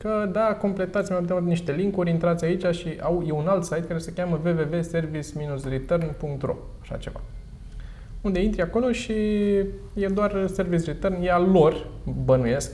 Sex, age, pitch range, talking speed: male, 20-39, 120-170 Hz, 160 wpm